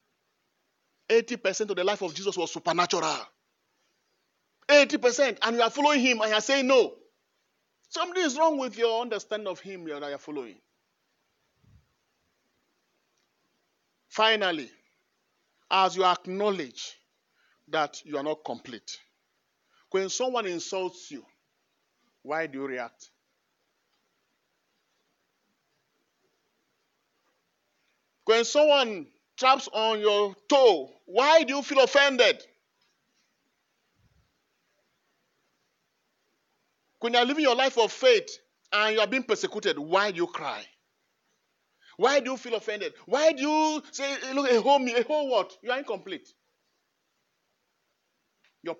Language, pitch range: English, 185-280 Hz